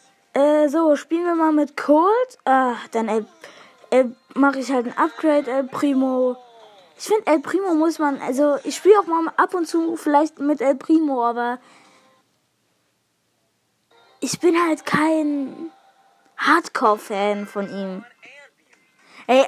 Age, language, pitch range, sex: 20-39, English, 260-330 Hz, female